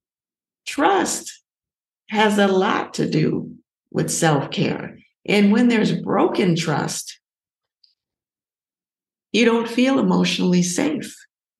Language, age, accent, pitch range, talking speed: English, 50-69, American, 175-235 Hz, 95 wpm